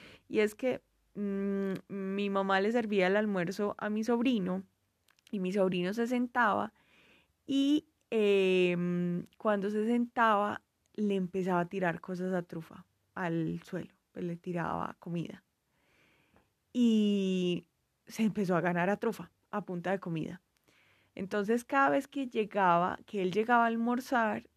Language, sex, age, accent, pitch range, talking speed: Spanish, female, 20-39, Colombian, 175-210 Hz, 140 wpm